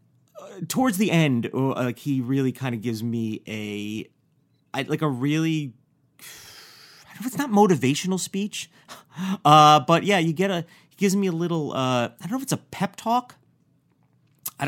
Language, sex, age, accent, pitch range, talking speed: English, male, 30-49, American, 115-155 Hz, 180 wpm